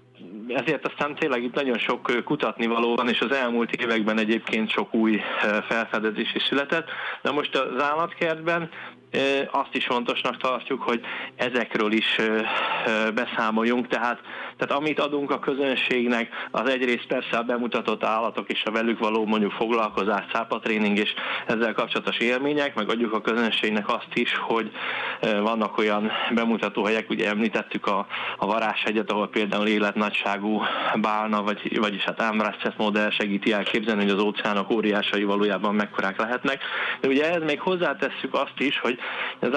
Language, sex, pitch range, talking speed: Hungarian, male, 110-130 Hz, 145 wpm